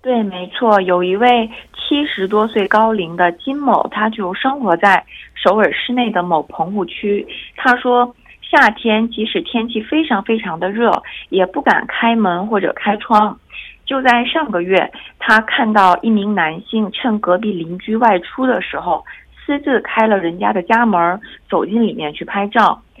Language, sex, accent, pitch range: Korean, female, Chinese, 185-235 Hz